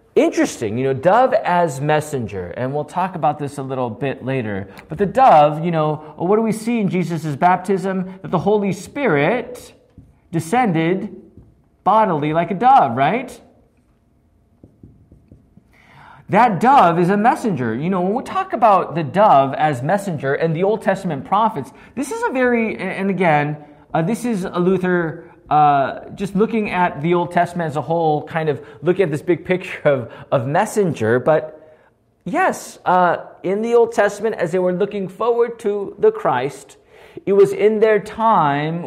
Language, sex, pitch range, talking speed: English, male, 155-215 Hz, 165 wpm